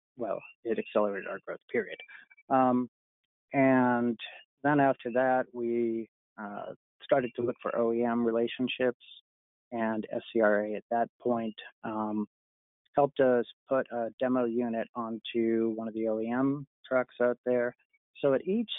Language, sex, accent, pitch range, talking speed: English, male, American, 115-130 Hz, 135 wpm